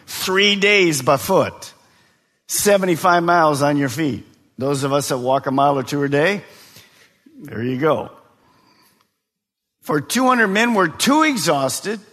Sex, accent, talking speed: male, American, 145 wpm